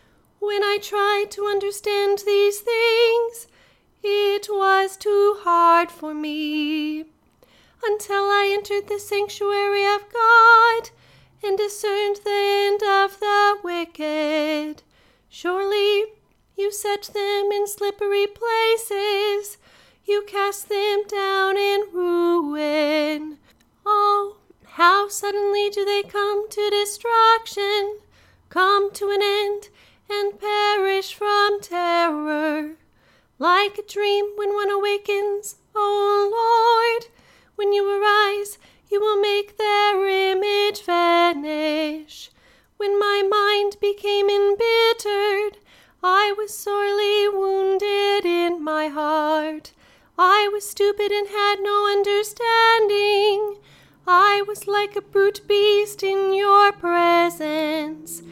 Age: 30-49